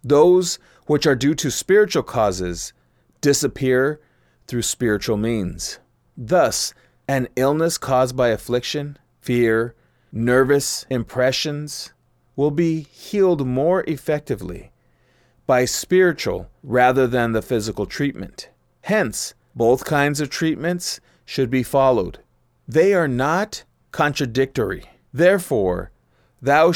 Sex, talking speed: male, 105 wpm